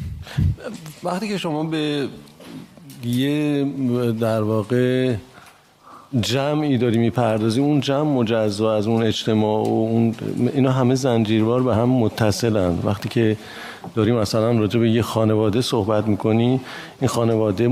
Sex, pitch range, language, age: male, 110-130 Hz, Persian, 50-69